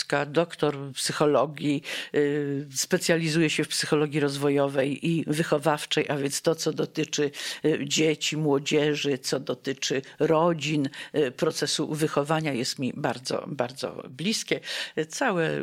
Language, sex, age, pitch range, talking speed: Polish, female, 50-69, 145-170 Hz, 105 wpm